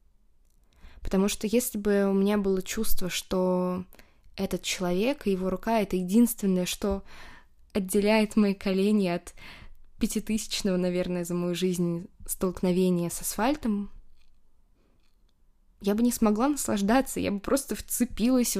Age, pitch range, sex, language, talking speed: 20-39, 180-215 Hz, female, Russian, 125 wpm